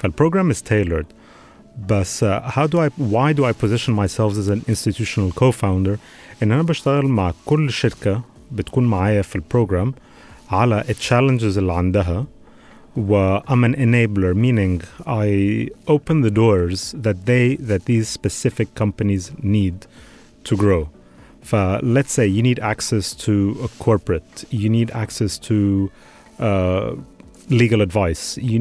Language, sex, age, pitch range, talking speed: Arabic, male, 30-49, 95-120 Hz, 115 wpm